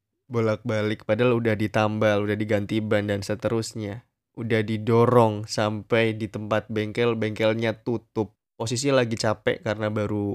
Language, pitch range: Indonesian, 105-125 Hz